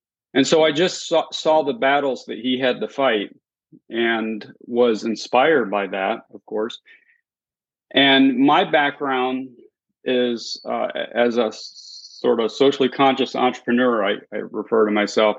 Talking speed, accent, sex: 145 wpm, American, male